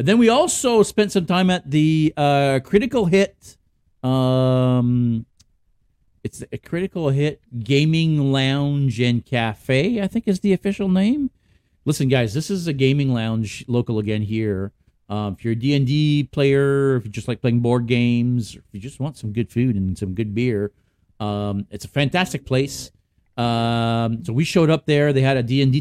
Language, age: English, 50-69